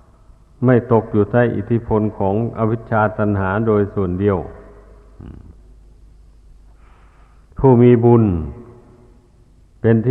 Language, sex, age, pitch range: Thai, male, 60-79, 100-120 Hz